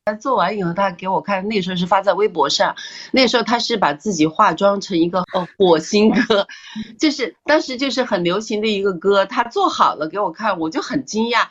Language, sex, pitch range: Chinese, female, 160-240 Hz